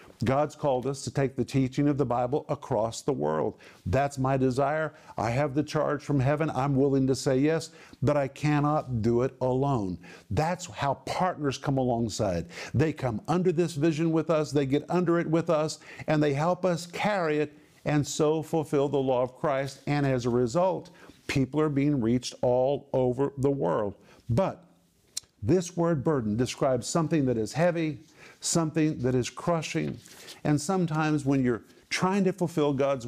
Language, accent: English, American